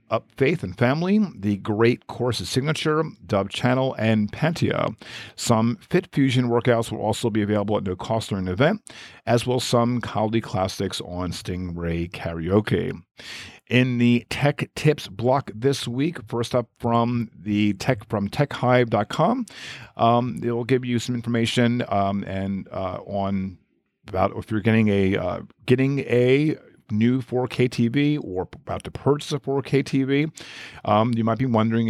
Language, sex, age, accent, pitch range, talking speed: English, male, 50-69, American, 100-125 Hz, 155 wpm